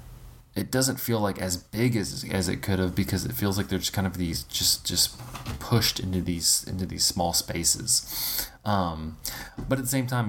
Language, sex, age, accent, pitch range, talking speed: English, male, 20-39, American, 80-95 Hz, 205 wpm